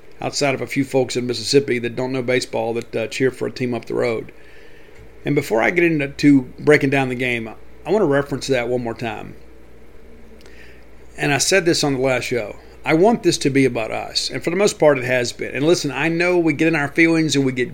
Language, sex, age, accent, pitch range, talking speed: English, male, 50-69, American, 130-160 Hz, 245 wpm